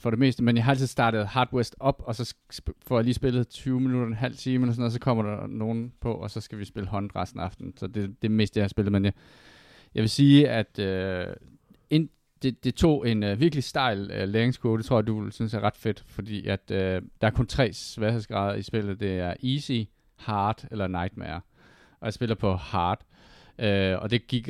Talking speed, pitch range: 240 wpm, 100-120 Hz